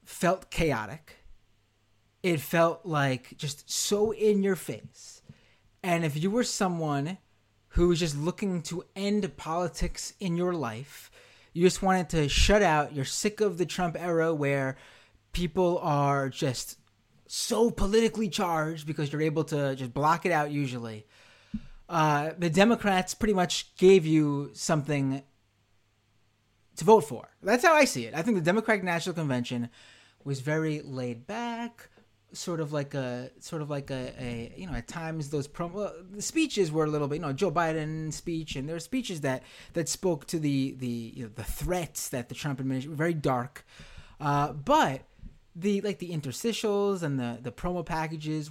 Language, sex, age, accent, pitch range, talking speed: English, male, 30-49, American, 135-180 Hz, 170 wpm